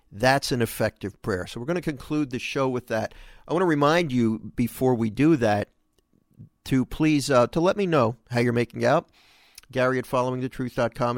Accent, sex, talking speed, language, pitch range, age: American, male, 195 wpm, English, 110-140 Hz, 50-69